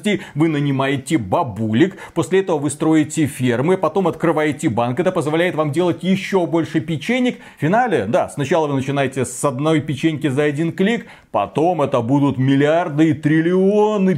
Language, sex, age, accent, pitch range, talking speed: Russian, male, 30-49, native, 130-180 Hz, 150 wpm